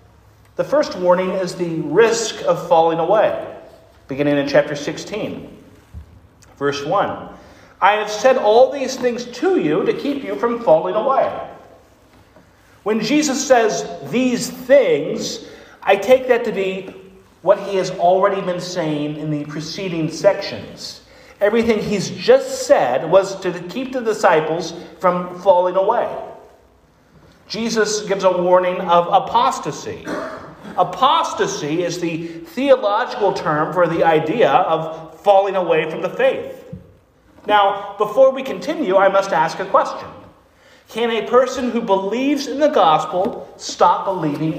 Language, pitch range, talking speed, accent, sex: English, 165-250 Hz, 135 wpm, American, male